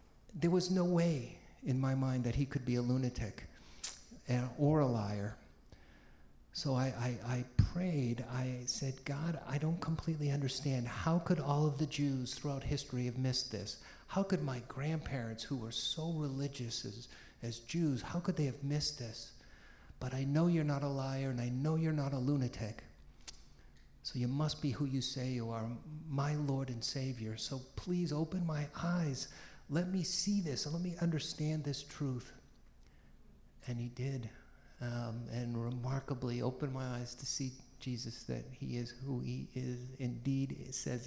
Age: 50-69